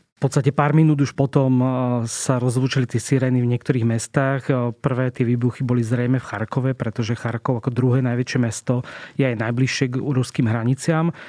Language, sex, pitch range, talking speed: Slovak, male, 125-135 Hz, 170 wpm